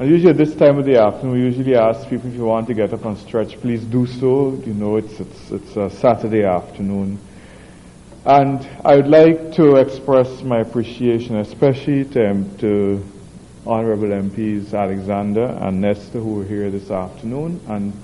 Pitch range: 100-130 Hz